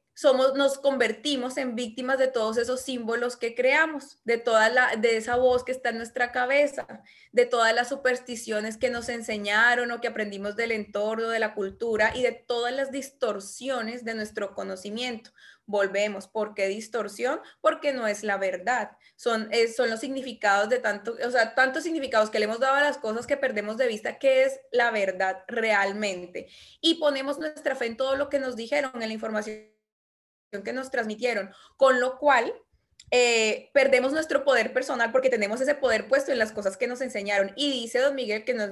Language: Spanish